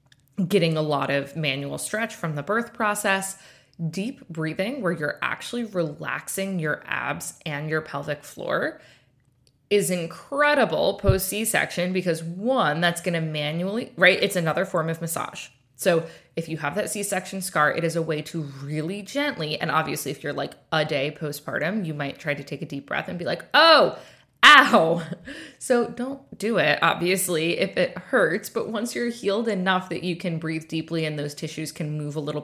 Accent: American